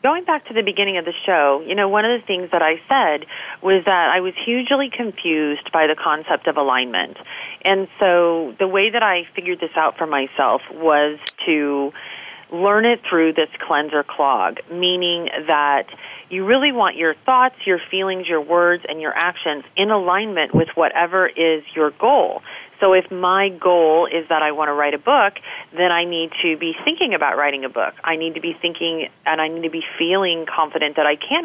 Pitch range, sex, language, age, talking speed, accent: 155-200 Hz, female, English, 40-59, 200 wpm, American